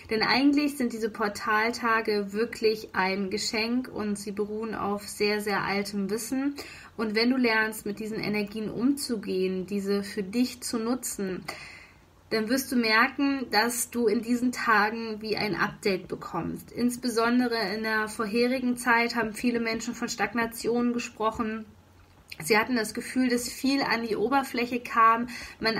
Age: 20-39